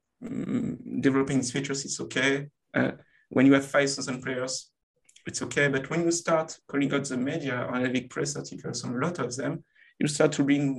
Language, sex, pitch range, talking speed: English, male, 125-145 Hz, 205 wpm